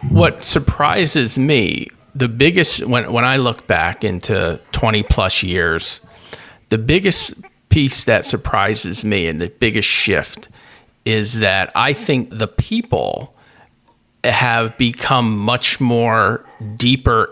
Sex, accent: male, American